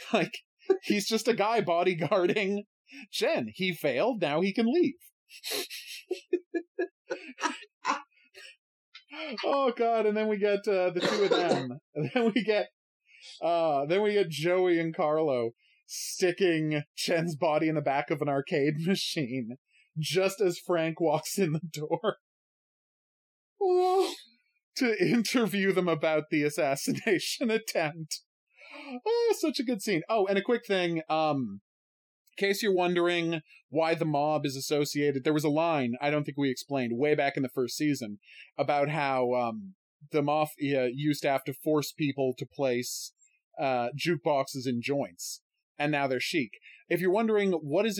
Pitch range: 145-215 Hz